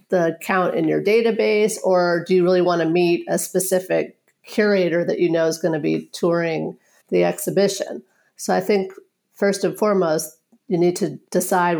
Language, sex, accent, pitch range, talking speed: English, female, American, 170-195 Hz, 180 wpm